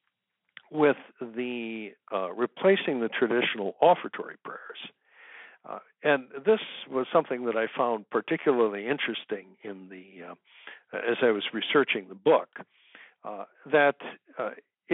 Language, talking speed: English, 120 wpm